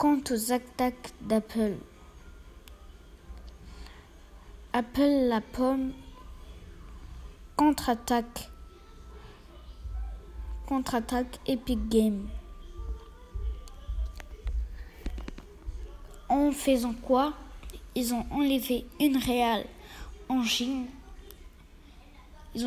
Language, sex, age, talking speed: French, female, 20-39, 60 wpm